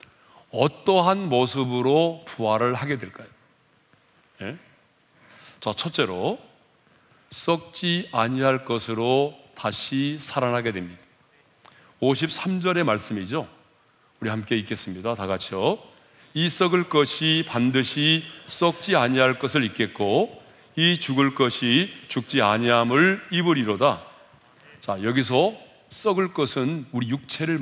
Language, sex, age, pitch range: Korean, male, 40-59, 115-160 Hz